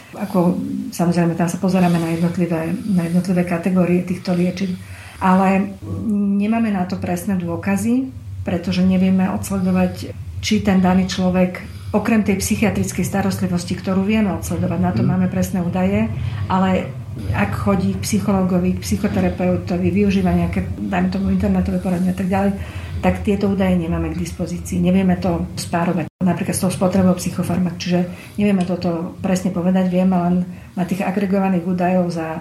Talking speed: 140 wpm